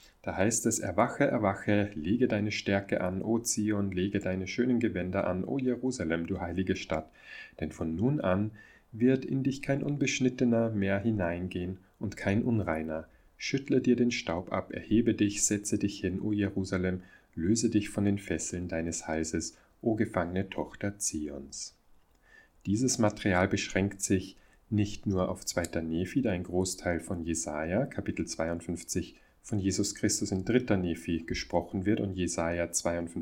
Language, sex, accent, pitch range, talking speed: German, male, German, 90-110 Hz, 150 wpm